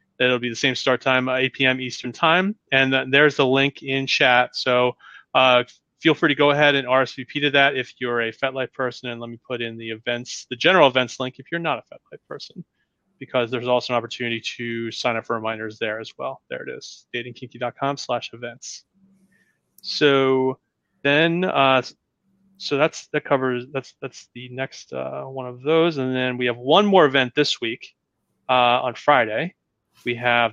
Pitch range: 120-140 Hz